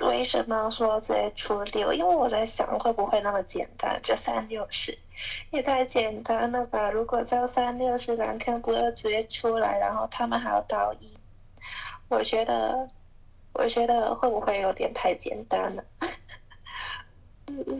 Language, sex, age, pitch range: Chinese, female, 20-39, 195-240 Hz